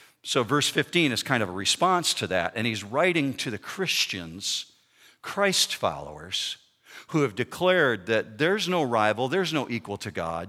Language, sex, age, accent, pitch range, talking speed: English, male, 50-69, American, 130-200 Hz, 170 wpm